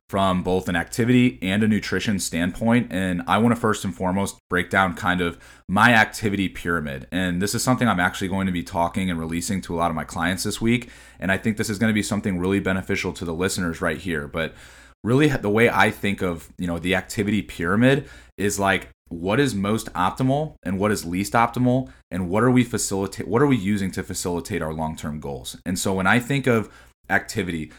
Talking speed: 220 wpm